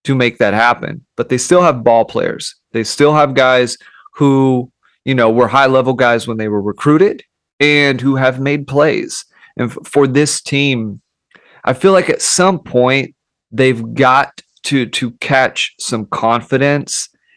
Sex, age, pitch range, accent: male, 30-49, 120-145 Hz, American